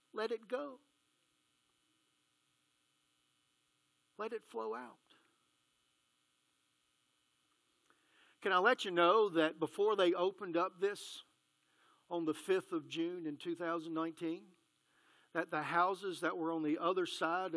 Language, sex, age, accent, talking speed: English, male, 50-69, American, 115 wpm